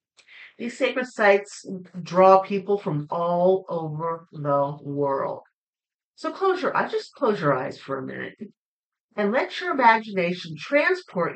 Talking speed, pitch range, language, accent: 135 wpm, 170-245 Hz, English, American